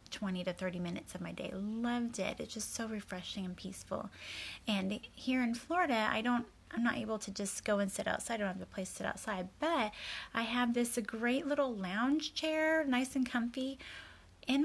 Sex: female